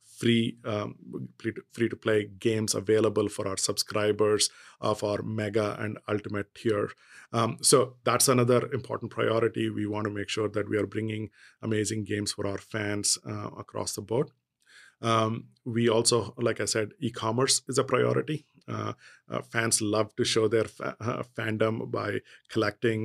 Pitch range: 105-115 Hz